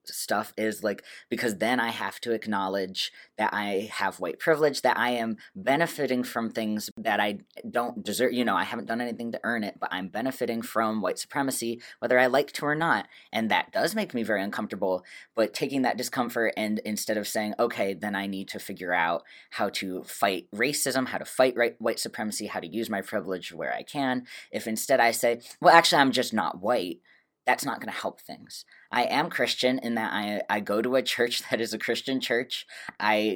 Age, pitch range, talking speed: 20-39, 105-125 Hz, 210 wpm